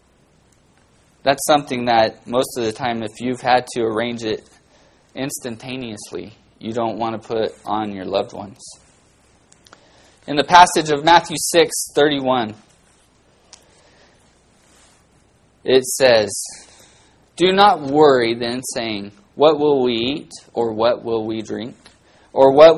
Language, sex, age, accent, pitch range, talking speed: English, male, 20-39, American, 115-160 Hz, 125 wpm